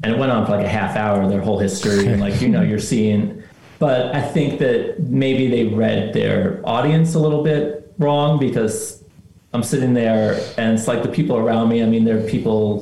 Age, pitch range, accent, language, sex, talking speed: 30-49, 100-120 Hz, American, English, male, 225 wpm